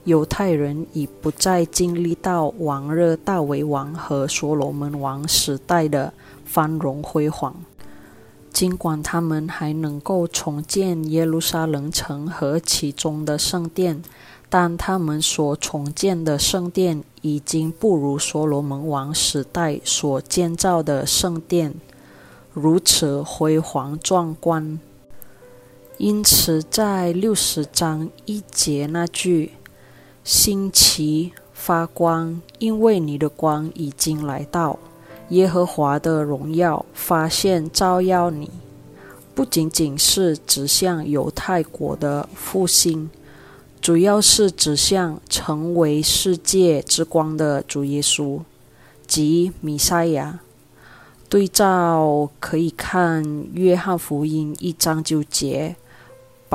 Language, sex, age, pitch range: Indonesian, female, 20-39, 145-175 Hz